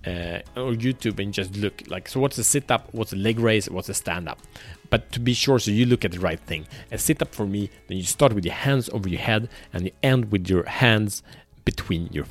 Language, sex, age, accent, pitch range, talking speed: Swedish, male, 30-49, Norwegian, 95-125 Hz, 245 wpm